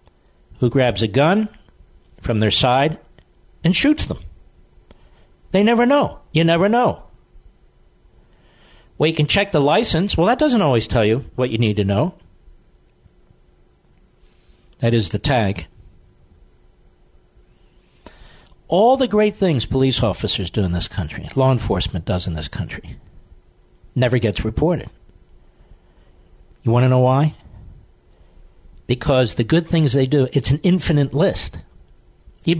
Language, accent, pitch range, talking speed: English, American, 95-155 Hz, 130 wpm